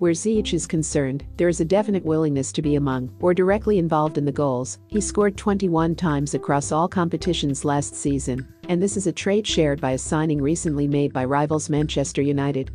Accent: American